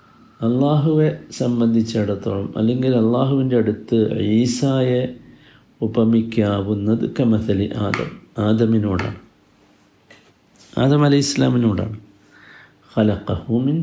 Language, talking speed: Malayalam, 60 wpm